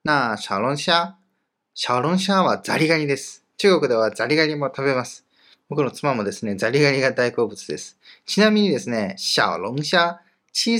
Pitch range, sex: 125-180 Hz, male